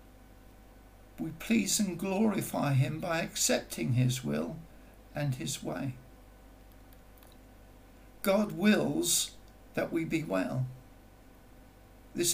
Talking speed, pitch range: 90 wpm, 125-185 Hz